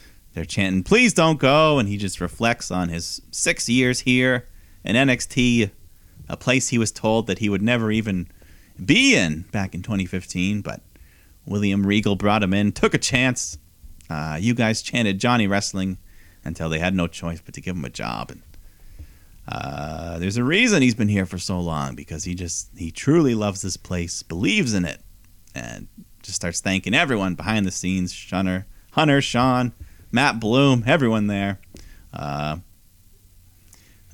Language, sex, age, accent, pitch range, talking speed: English, male, 30-49, American, 90-115 Hz, 170 wpm